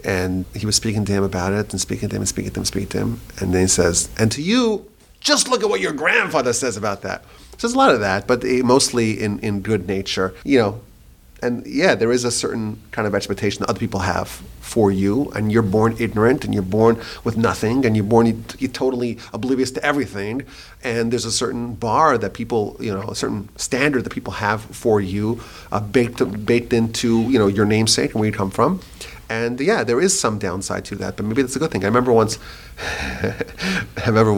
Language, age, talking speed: English, 30-49, 230 wpm